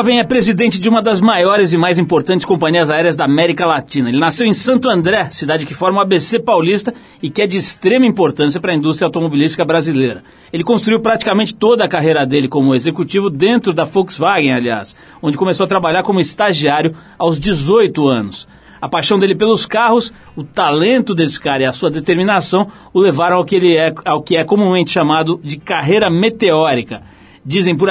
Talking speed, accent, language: 190 wpm, Brazilian, Portuguese